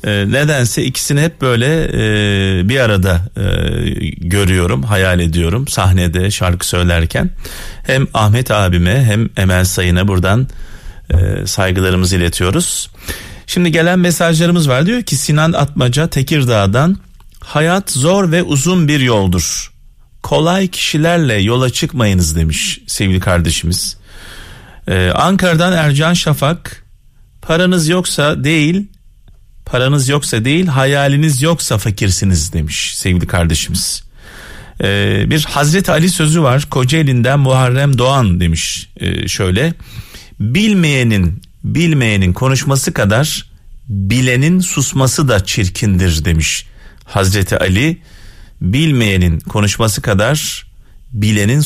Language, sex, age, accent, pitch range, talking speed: Turkish, male, 40-59, native, 95-150 Hz, 105 wpm